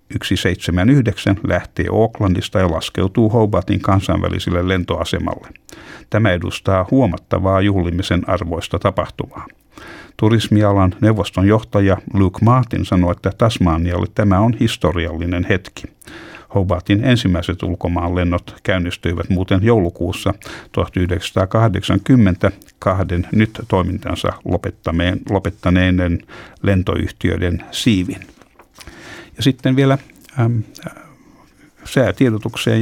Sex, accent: male, native